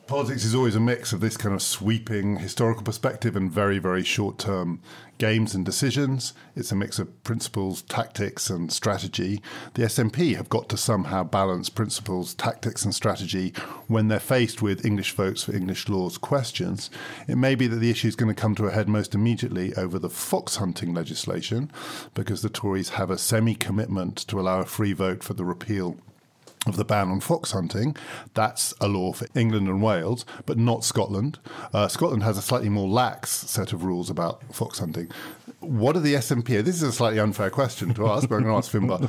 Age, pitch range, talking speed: 50-69, 100-120 Hz, 195 wpm